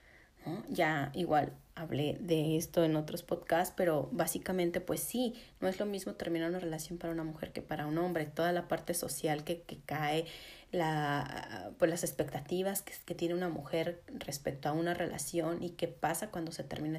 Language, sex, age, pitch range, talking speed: Spanish, female, 30-49, 160-185 Hz, 185 wpm